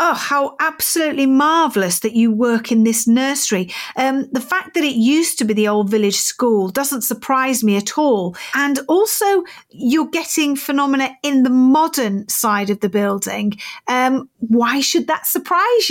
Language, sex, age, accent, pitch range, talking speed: English, female, 40-59, British, 230-315 Hz, 165 wpm